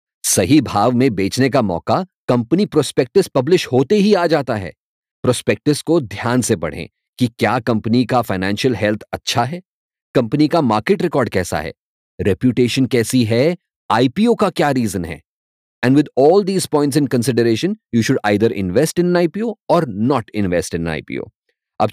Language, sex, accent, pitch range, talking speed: English, male, Indian, 110-160 Hz, 165 wpm